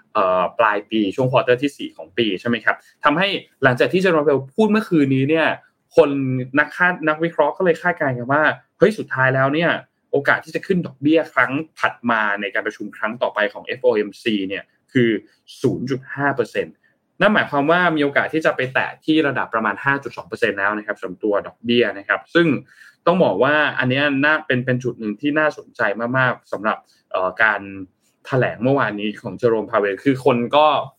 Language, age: Thai, 20-39